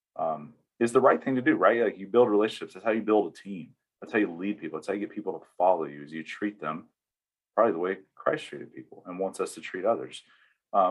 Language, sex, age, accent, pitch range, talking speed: English, male, 30-49, American, 90-105 Hz, 265 wpm